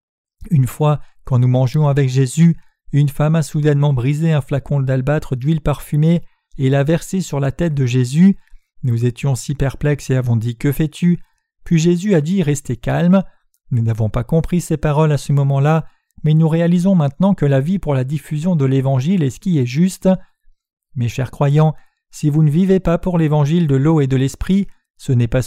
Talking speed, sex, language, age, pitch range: 200 wpm, male, French, 40-59, 135-170 Hz